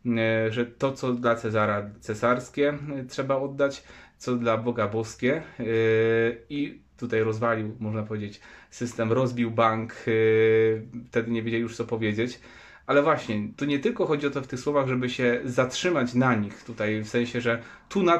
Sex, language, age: male, Polish, 30-49